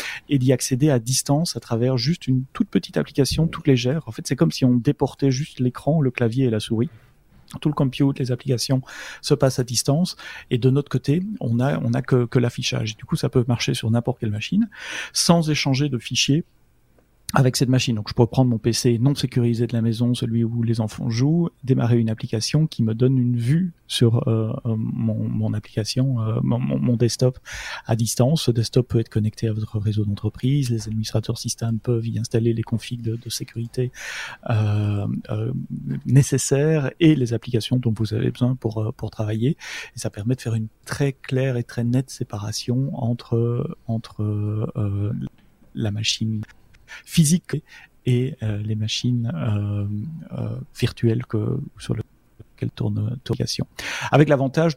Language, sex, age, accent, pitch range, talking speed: French, male, 30-49, French, 115-135 Hz, 180 wpm